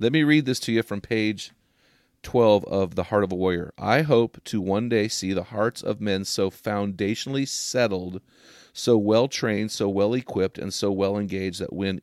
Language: English